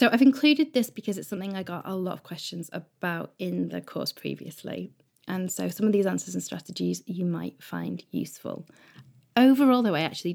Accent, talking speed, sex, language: British, 195 wpm, female, English